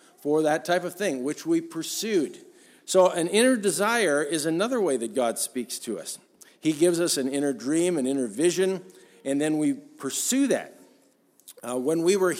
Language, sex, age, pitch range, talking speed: English, male, 50-69, 135-180 Hz, 185 wpm